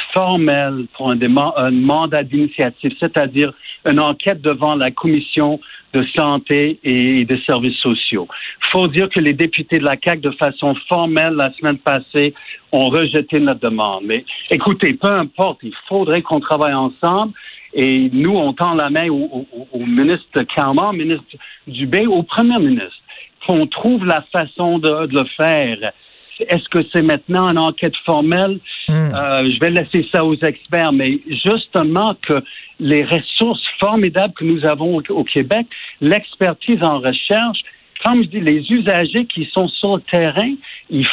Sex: male